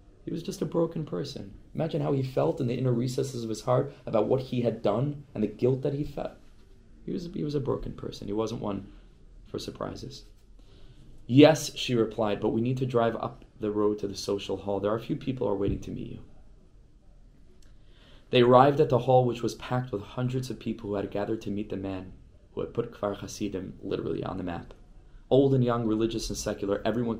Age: 20-39